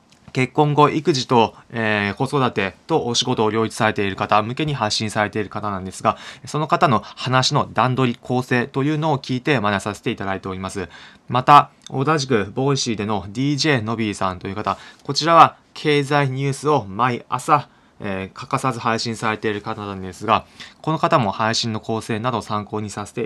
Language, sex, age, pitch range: Japanese, male, 20-39, 105-140 Hz